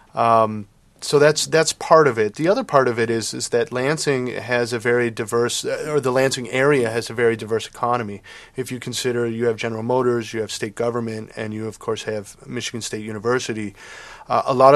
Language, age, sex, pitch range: English, 30-49, male, 105-125 Hz